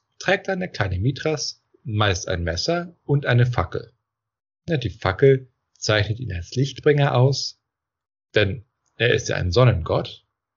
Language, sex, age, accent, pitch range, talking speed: German, male, 40-59, German, 100-130 Hz, 135 wpm